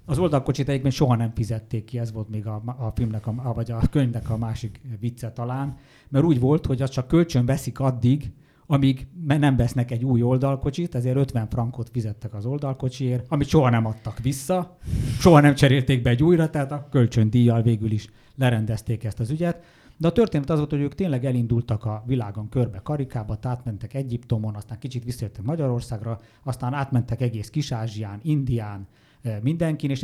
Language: English